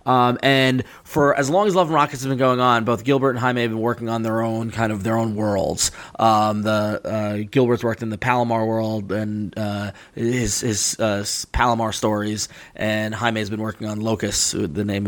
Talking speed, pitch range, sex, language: 210 wpm, 110-130 Hz, male, English